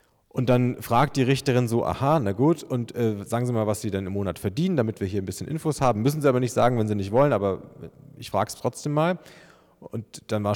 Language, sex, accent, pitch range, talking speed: German, male, German, 105-135 Hz, 255 wpm